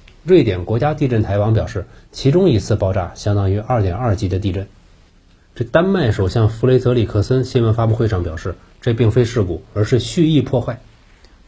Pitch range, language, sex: 95-125 Hz, Chinese, male